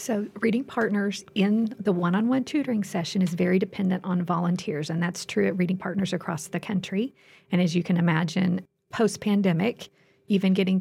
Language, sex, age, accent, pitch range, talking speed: English, female, 40-59, American, 175-210 Hz, 185 wpm